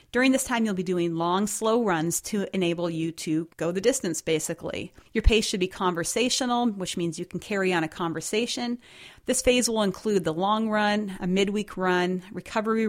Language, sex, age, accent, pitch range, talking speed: English, female, 40-59, American, 175-225 Hz, 190 wpm